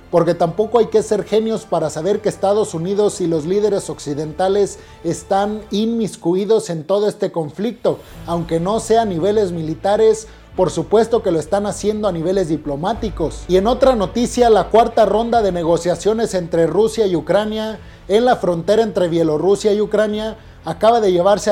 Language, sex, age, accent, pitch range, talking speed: Spanish, male, 30-49, Mexican, 180-220 Hz, 165 wpm